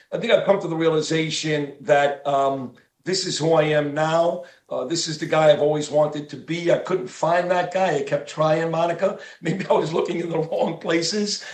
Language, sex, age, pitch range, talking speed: English, male, 50-69, 150-175 Hz, 220 wpm